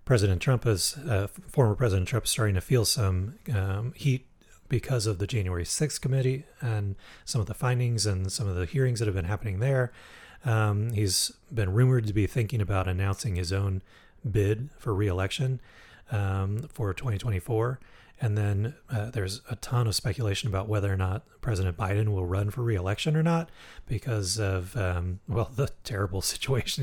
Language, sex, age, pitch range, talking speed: English, male, 30-49, 100-125 Hz, 175 wpm